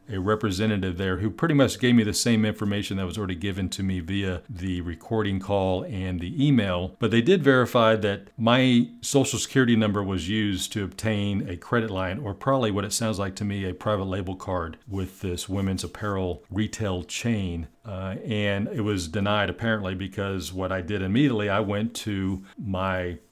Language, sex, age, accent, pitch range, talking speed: English, male, 40-59, American, 100-120 Hz, 190 wpm